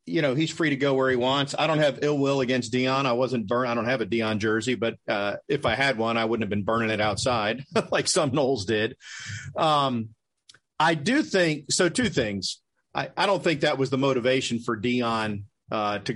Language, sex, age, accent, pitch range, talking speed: English, male, 40-59, American, 115-145 Hz, 225 wpm